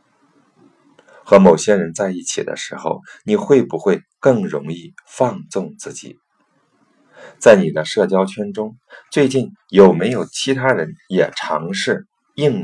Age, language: 50-69, Chinese